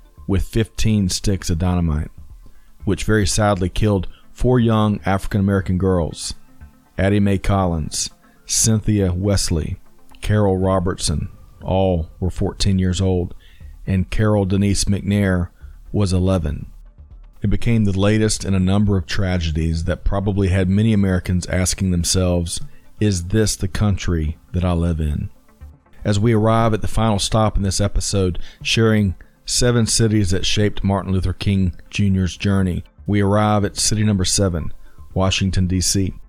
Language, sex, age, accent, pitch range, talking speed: English, male, 40-59, American, 90-105 Hz, 135 wpm